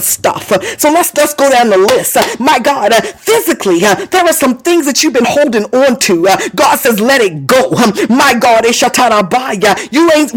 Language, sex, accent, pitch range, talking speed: English, female, American, 230-310 Hz, 205 wpm